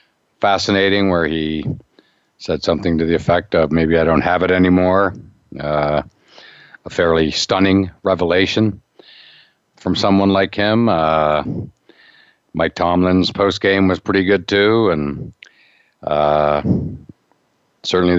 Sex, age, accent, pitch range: male, 60-79, American, 80-100 Hz